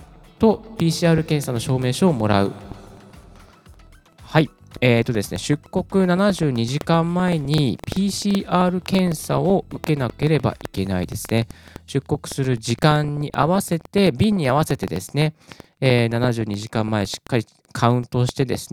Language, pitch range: Japanese, 105-165 Hz